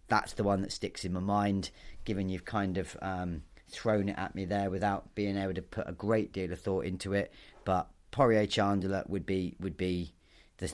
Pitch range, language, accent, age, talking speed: 95-110 Hz, English, British, 30-49, 210 wpm